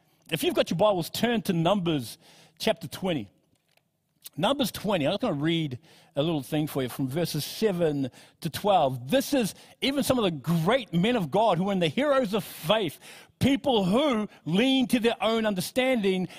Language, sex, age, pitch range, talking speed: English, male, 50-69, 150-210 Hz, 185 wpm